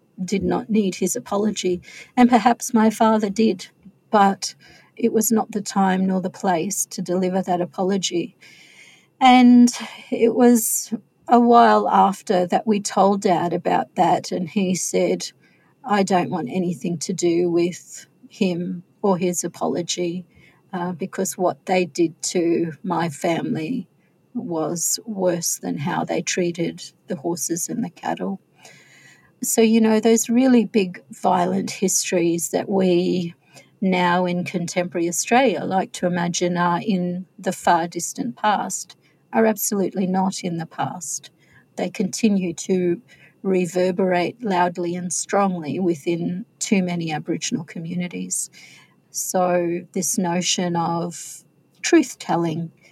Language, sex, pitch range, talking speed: English, female, 175-205 Hz, 130 wpm